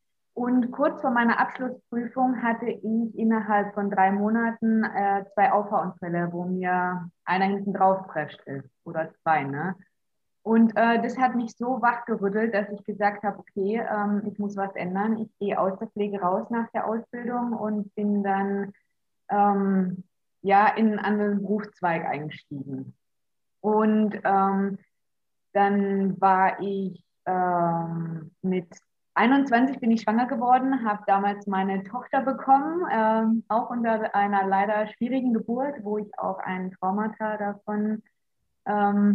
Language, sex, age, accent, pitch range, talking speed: German, female, 20-39, German, 195-230 Hz, 140 wpm